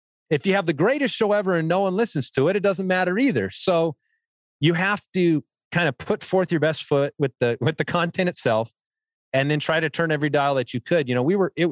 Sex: male